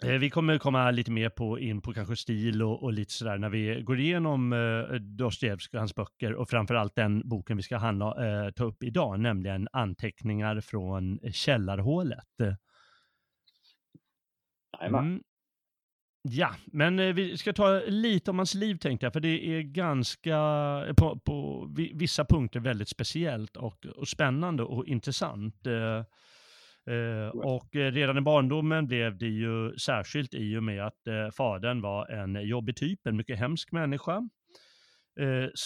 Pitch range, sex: 105-135 Hz, male